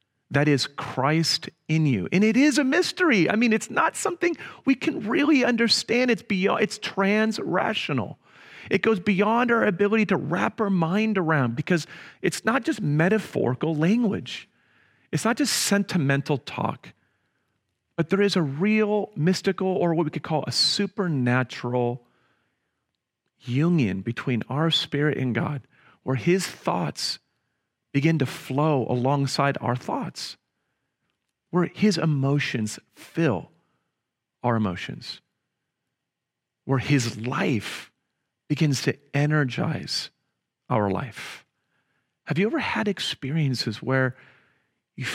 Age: 40-59